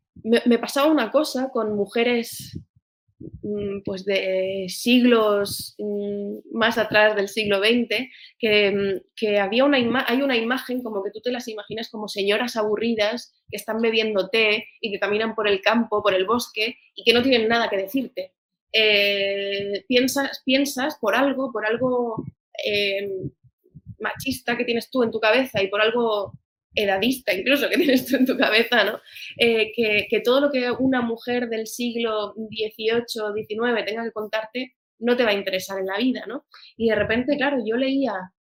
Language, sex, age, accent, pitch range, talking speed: Spanish, female, 20-39, Spanish, 200-245 Hz, 170 wpm